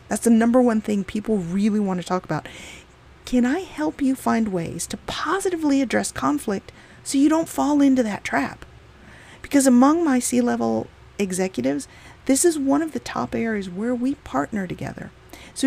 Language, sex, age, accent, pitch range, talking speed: English, female, 40-59, American, 210-290 Hz, 170 wpm